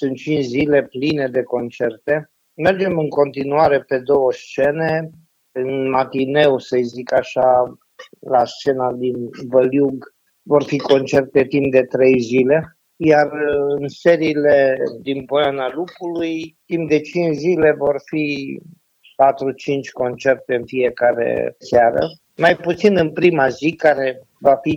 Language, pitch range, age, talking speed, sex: English, 125-150 Hz, 50-69, 130 wpm, male